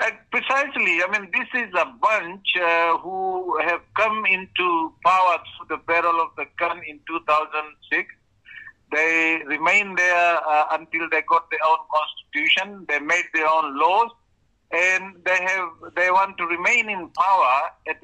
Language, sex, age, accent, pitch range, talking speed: English, male, 50-69, Indian, 160-215 Hz, 155 wpm